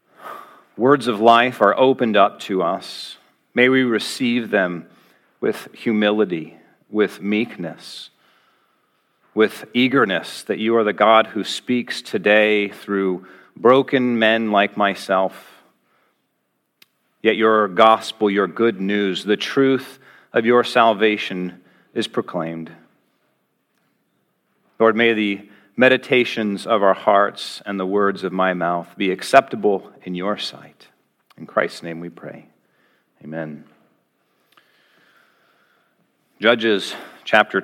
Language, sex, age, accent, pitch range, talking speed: English, male, 40-59, American, 100-120 Hz, 110 wpm